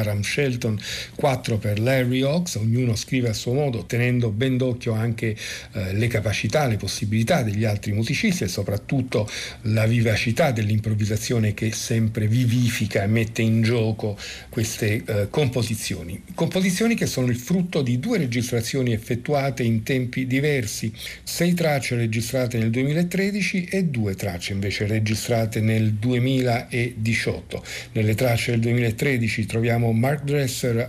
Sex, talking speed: male, 130 wpm